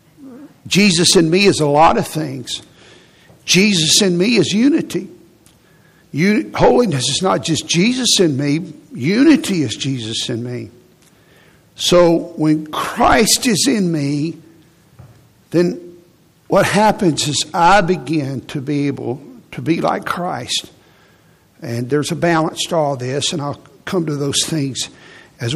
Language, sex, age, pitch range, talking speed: English, male, 60-79, 145-175 Hz, 135 wpm